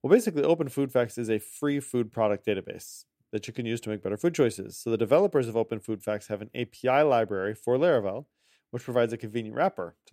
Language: English